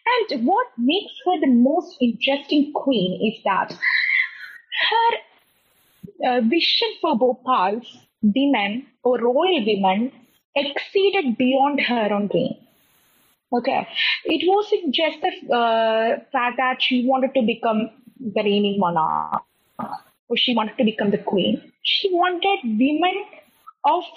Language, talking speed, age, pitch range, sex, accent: English, 125 wpm, 20-39, 220-330 Hz, female, Indian